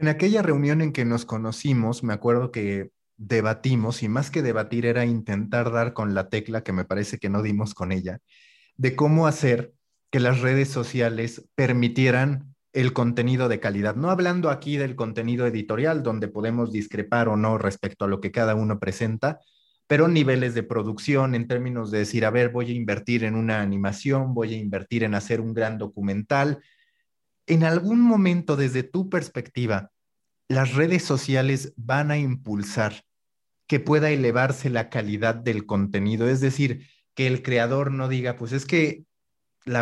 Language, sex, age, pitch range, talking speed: Spanish, male, 30-49, 115-145 Hz, 170 wpm